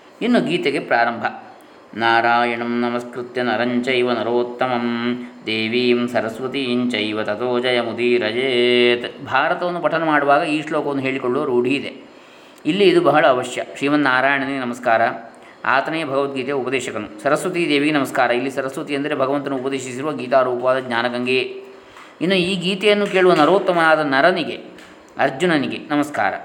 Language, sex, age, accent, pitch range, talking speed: Kannada, male, 20-39, native, 125-170 Hz, 105 wpm